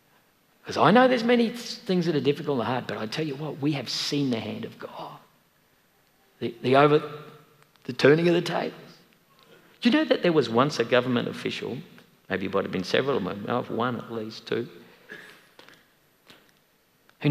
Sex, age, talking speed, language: male, 50-69, 185 wpm, English